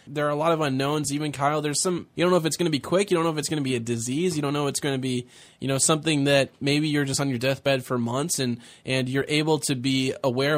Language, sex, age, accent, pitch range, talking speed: English, male, 20-39, American, 135-170 Hz, 320 wpm